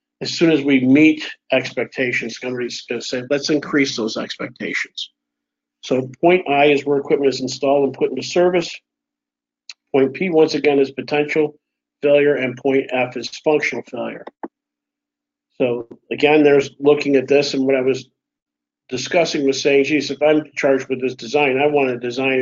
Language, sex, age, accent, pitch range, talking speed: English, male, 50-69, American, 130-150 Hz, 170 wpm